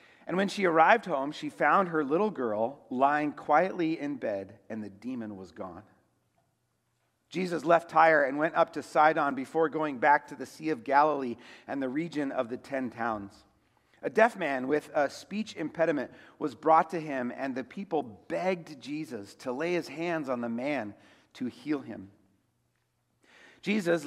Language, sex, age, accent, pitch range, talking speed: English, male, 40-59, American, 130-175 Hz, 170 wpm